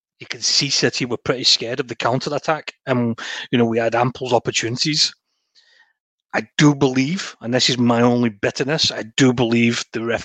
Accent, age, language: British, 30-49, English